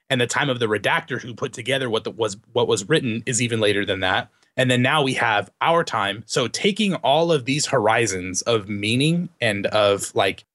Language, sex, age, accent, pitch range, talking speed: English, male, 30-49, American, 105-150 Hz, 210 wpm